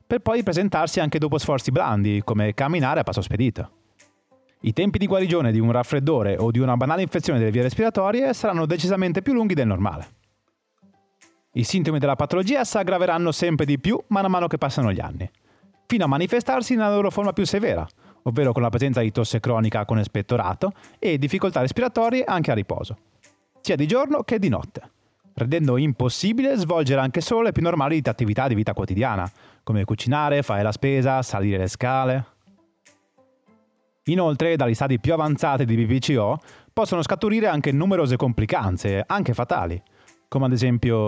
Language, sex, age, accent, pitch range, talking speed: Italian, male, 30-49, native, 115-180 Hz, 165 wpm